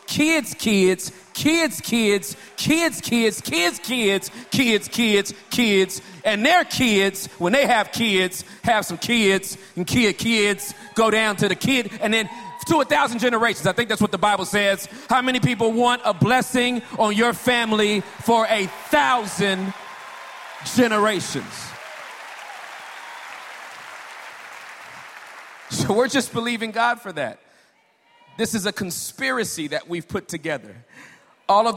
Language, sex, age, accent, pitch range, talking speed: English, male, 40-59, American, 150-220 Hz, 135 wpm